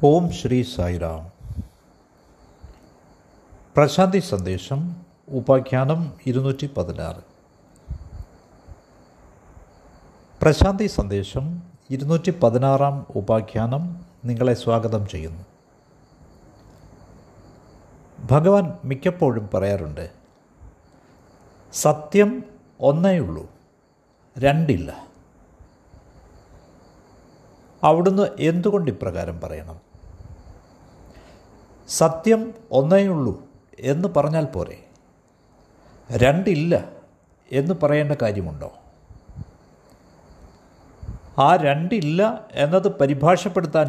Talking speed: 55 wpm